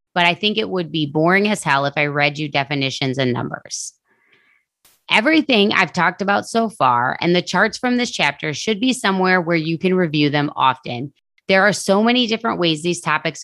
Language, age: English, 30-49